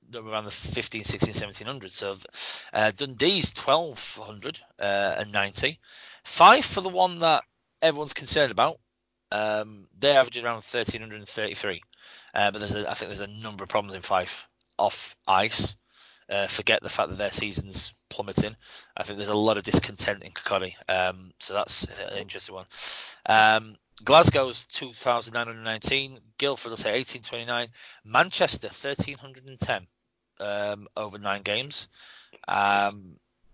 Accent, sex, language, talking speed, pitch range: British, male, English, 135 wpm, 105-125 Hz